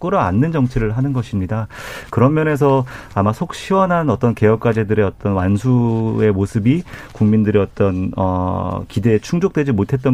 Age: 40-59